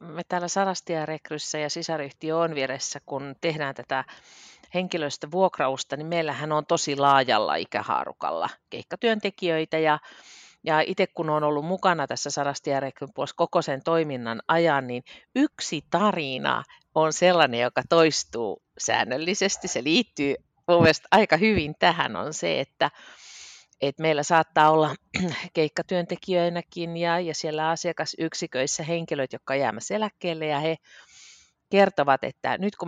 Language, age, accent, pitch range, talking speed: Finnish, 50-69, native, 140-175 Hz, 120 wpm